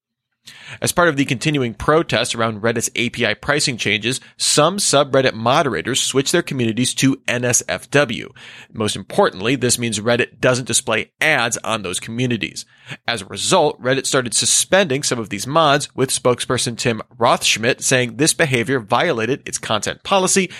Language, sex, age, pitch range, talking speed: English, male, 30-49, 115-140 Hz, 150 wpm